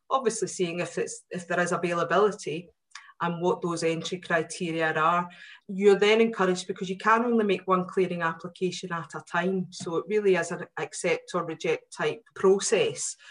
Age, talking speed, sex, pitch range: 30-49, 165 wpm, female, 165-190 Hz